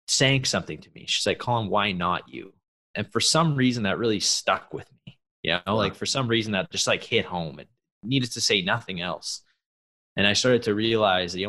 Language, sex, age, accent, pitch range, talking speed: English, male, 20-39, American, 90-110 Hz, 220 wpm